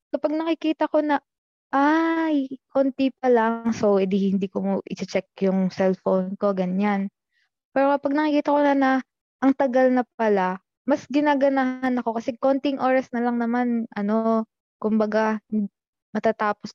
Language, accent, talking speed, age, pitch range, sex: Filipino, native, 145 wpm, 20-39, 210-265 Hz, female